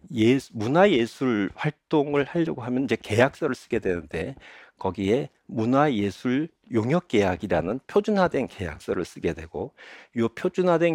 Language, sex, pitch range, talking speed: English, male, 100-150 Hz, 115 wpm